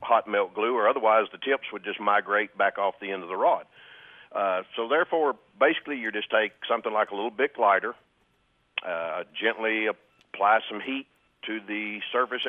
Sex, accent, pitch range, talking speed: male, American, 105-120 Hz, 185 wpm